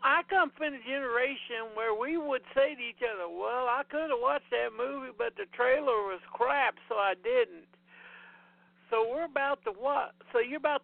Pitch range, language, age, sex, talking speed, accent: 185-260 Hz, English, 60-79, male, 195 wpm, American